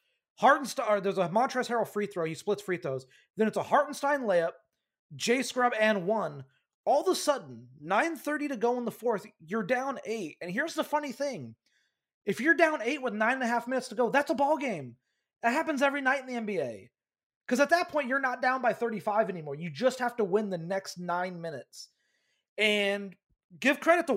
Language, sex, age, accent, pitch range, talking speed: English, male, 30-49, American, 190-260 Hz, 210 wpm